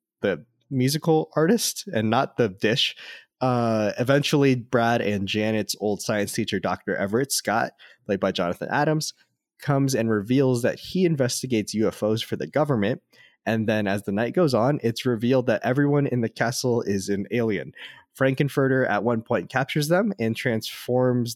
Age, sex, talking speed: 20-39, male, 160 wpm